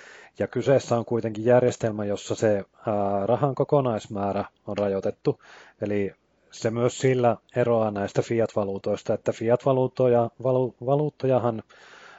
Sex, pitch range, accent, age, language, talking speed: male, 100-125 Hz, native, 30-49, Finnish, 100 wpm